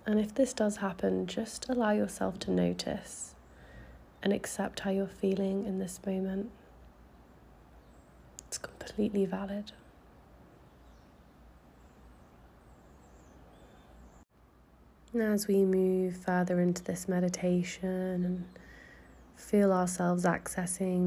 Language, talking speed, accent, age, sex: English, 95 wpm, British, 20-39, female